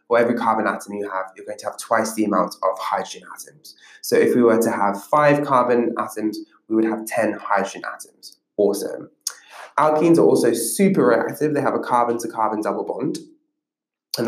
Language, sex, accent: English, male, British